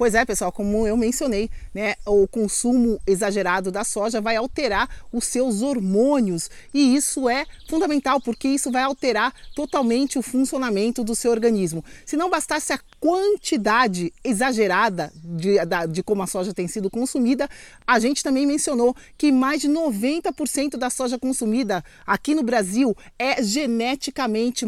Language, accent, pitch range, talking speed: Portuguese, Brazilian, 215-285 Hz, 150 wpm